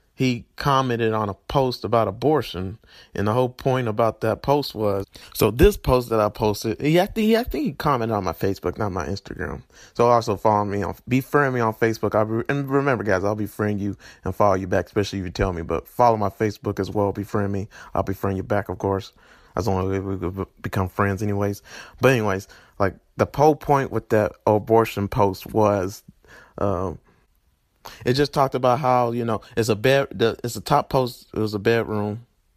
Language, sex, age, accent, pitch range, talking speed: English, male, 30-49, American, 100-120 Hz, 200 wpm